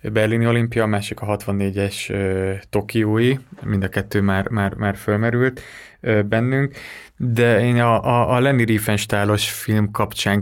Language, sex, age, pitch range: Hungarian, male, 20-39, 100-115 Hz